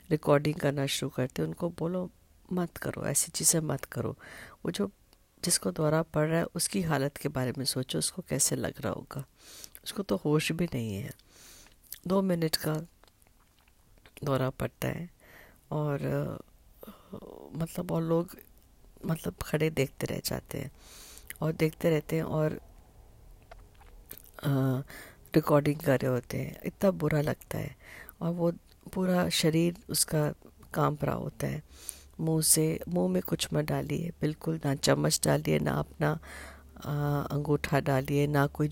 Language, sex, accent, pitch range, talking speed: Hindi, female, native, 135-170 Hz, 145 wpm